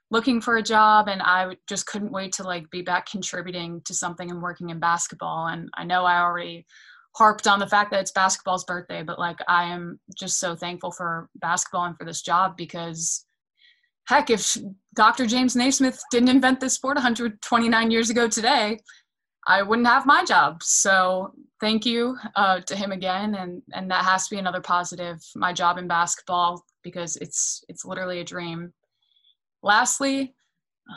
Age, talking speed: 20-39, 175 wpm